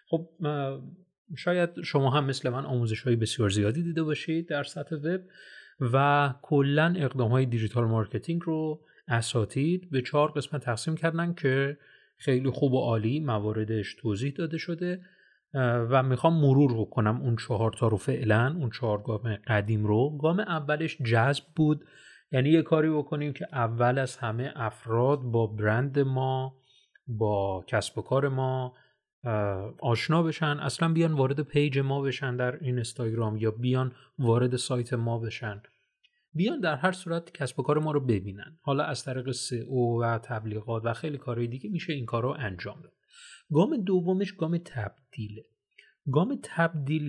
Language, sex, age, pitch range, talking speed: Persian, male, 30-49, 120-155 Hz, 150 wpm